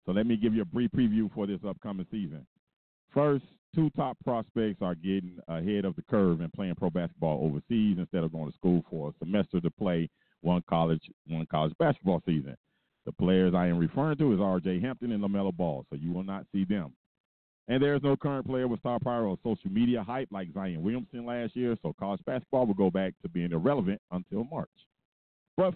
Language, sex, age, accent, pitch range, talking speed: English, male, 40-59, American, 85-115 Hz, 210 wpm